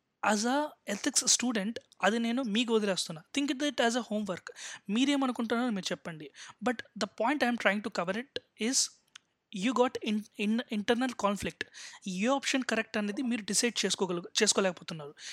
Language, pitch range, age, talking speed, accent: Telugu, 195-255 Hz, 20-39, 140 wpm, native